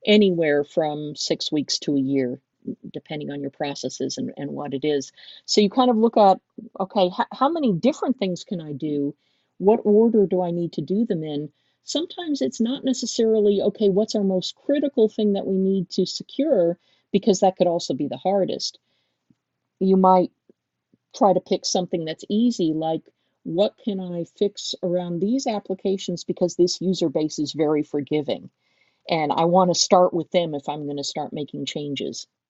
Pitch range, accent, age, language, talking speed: 150-195 Hz, American, 50-69, English, 185 wpm